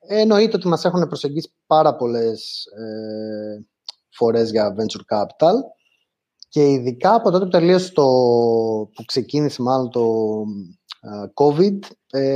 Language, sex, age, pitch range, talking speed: Greek, male, 20-39, 120-170 Hz, 110 wpm